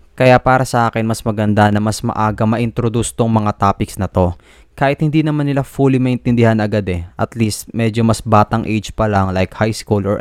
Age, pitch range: 20-39, 100-120 Hz